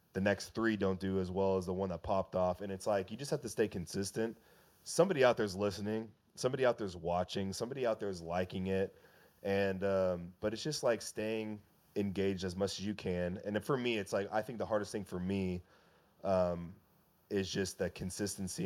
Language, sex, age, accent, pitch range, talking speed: English, male, 20-39, American, 90-110 Hz, 220 wpm